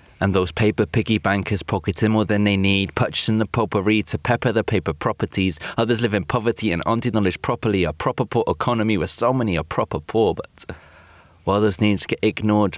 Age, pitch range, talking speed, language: 30-49, 90-110 Hz, 195 wpm, English